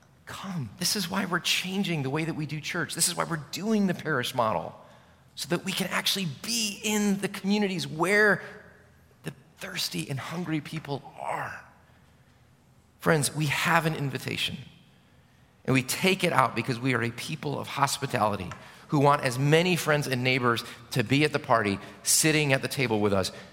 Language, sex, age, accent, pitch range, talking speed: English, male, 40-59, American, 110-160 Hz, 180 wpm